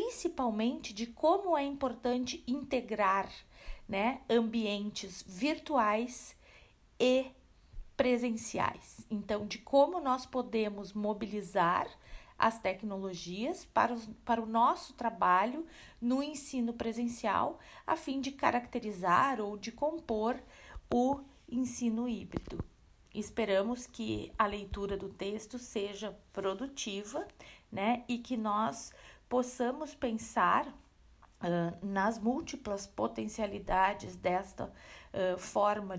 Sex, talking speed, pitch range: female, 95 wpm, 195-250 Hz